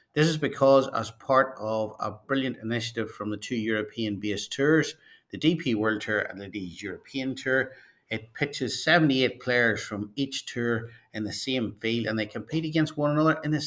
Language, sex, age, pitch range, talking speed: English, male, 50-69, 105-135 Hz, 180 wpm